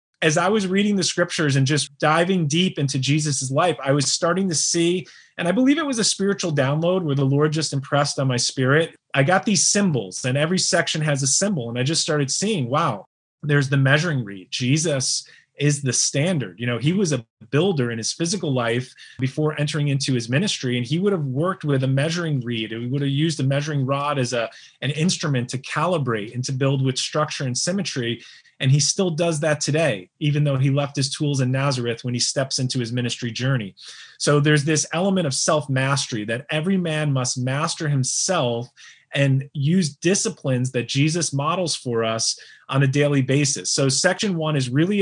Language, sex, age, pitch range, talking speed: English, male, 30-49, 130-165 Hz, 205 wpm